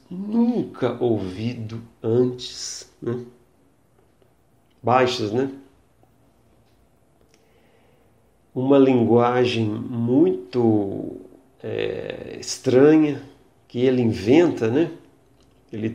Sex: male